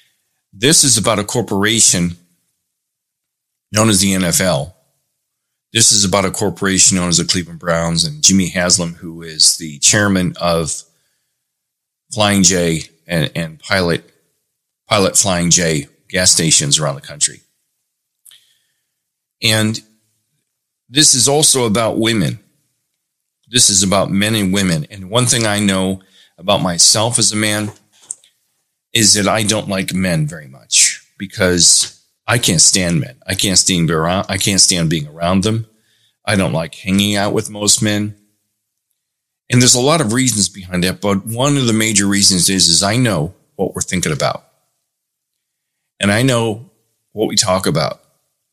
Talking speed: 145 wpm